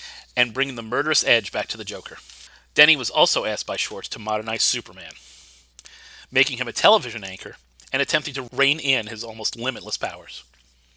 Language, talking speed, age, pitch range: English, 175 wpm, 40-59, 95-135 Hz